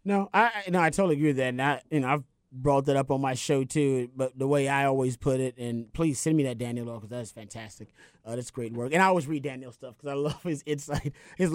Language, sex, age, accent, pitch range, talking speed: English, male, 30-49, American, 125-155 Hz, 285 wpm